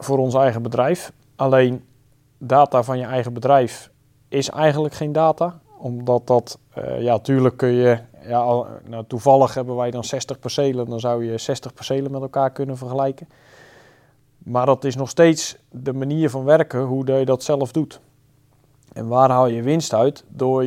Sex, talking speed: male, 170 wpm